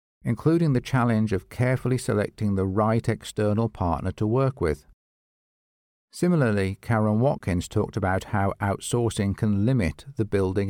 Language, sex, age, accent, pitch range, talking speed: English, male, 50-69, British, 95-120 Hz, 135 wpm